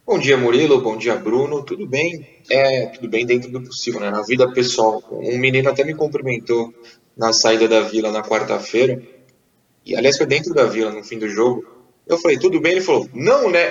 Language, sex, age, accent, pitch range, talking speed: Portuguese, male, 20-39, Brazilian, 120-155 Hz, 205 wpm